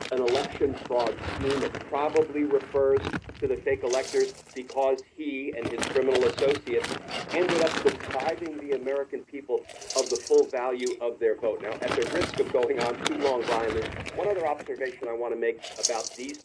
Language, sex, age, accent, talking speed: English, male, 50-69, American, 175 wpm